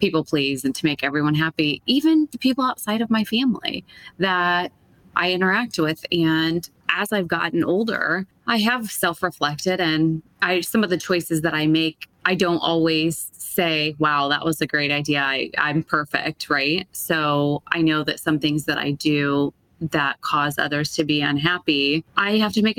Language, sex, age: English, female, 20-39